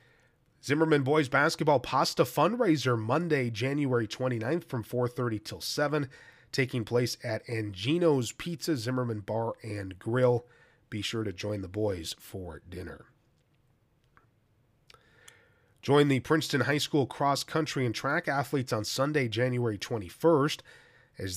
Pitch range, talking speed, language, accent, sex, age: 115-145 Hz, 120 wpm, English, American, male, 30-49